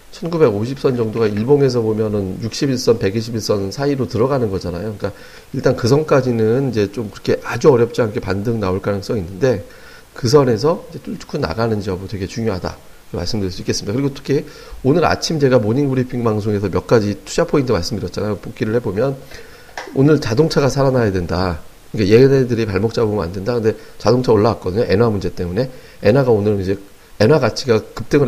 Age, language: 40-59, Korean